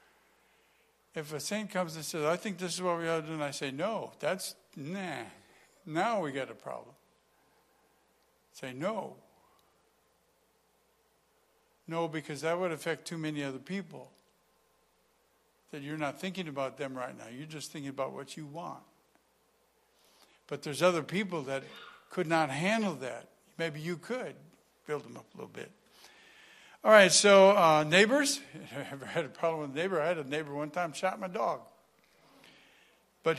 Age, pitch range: 60-79, 150-190 Hz